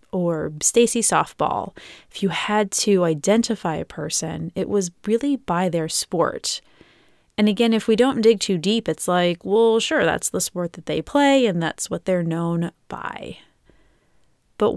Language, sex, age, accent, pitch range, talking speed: English, female, 20-39, American, 175-220 Hz, 165 wpm